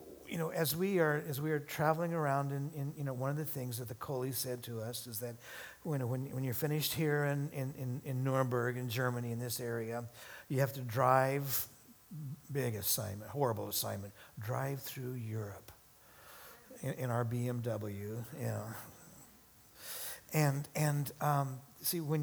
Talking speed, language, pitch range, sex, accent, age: 170 wpm, English, 115-145 Hz, male, American, 60-79